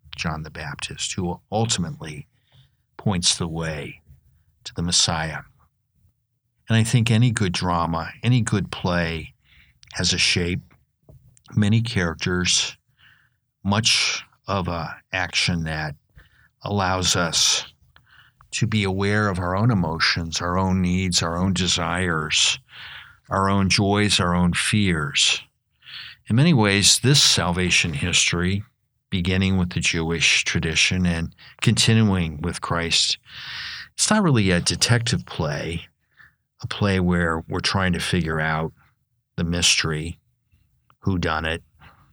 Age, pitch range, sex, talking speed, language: 60-79, 85-110 Hz, male, 120 wpm, English